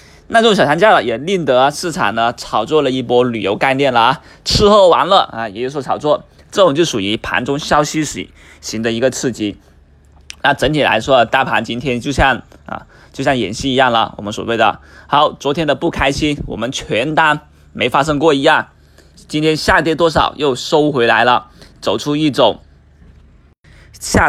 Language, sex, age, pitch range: Chinese, male, 20-39, 100-150 Hz